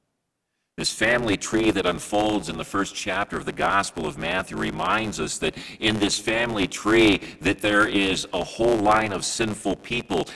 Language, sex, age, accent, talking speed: English, male, 50-69, American, 175 wpm